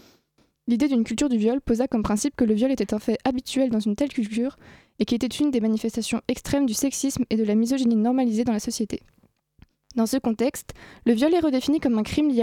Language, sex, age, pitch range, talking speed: French, female, 20-39, 225-265 Hz, 225 wpm